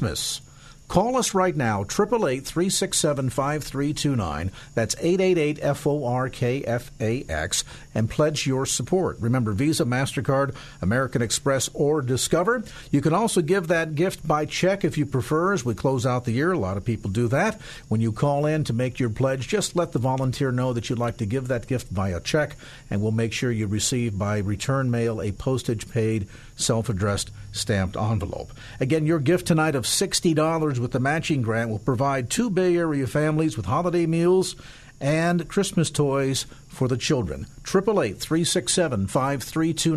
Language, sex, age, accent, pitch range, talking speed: English, male, 50-69, American, 125-165 Hz, 170 wpm